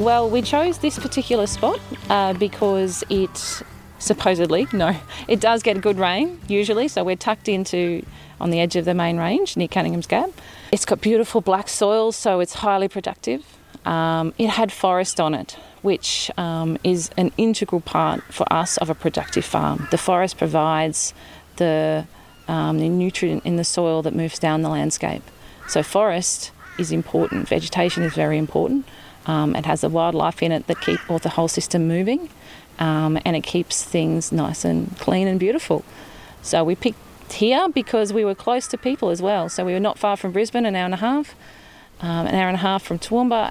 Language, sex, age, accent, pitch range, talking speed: English, female, 30-49, Australian, 165-215 Hz, 190 wpm